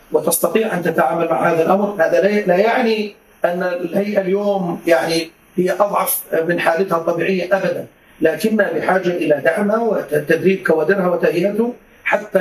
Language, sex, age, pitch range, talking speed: Arabic, male, 40-59, 175-215 Hz, 130 wpm